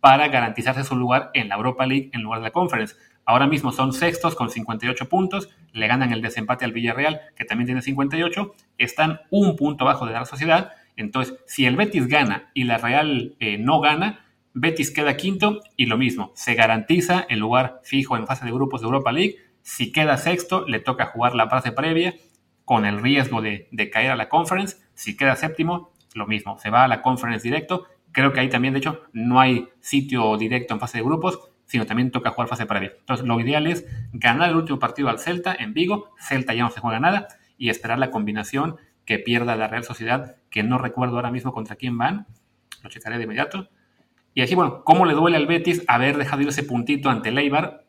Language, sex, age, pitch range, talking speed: Spanish, male, 30-49, 115-150 Hz, 215 wpm